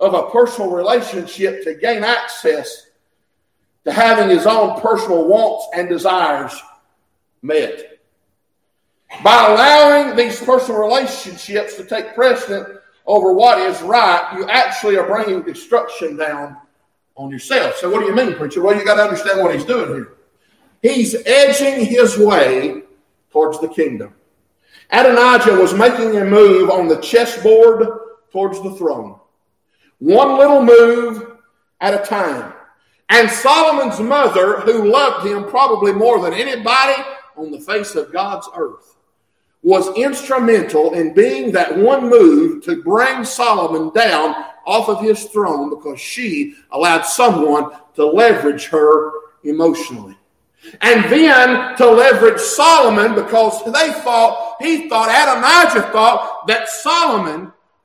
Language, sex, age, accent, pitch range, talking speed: English, male, 50-69, American, 190-275 Hz, 135 wpm